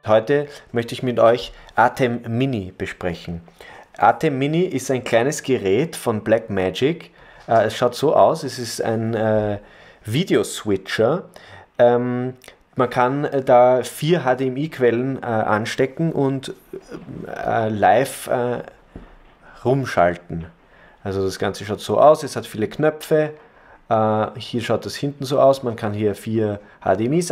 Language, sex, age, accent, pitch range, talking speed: German, male, 30-49, German, 105-130 Hz, 125 wpm